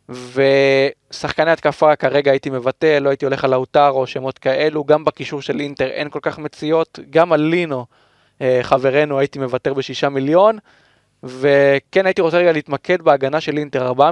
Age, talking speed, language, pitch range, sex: 20-39, 160 wpm, Hebrew, 135-165 Hz, male